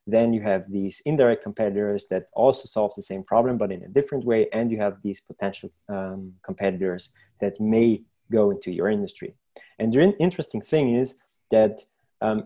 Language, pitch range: English, 100-125 Hz